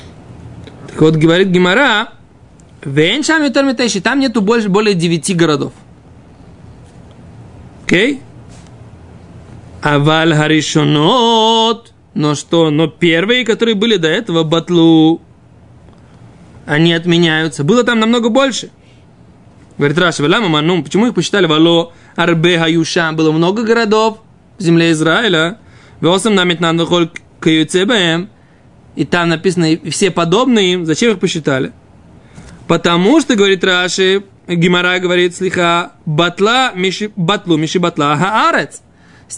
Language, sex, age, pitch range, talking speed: Russian, male, 20-39, 160-205 Hz, 110 wpm